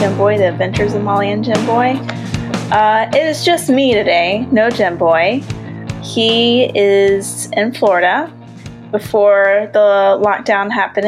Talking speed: 140 wpm